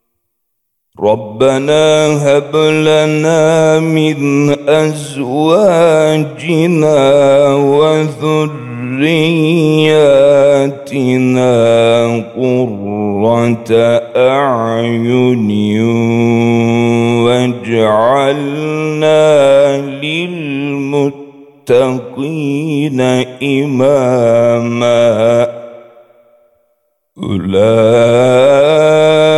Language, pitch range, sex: Turkish, 135-160 Hz, male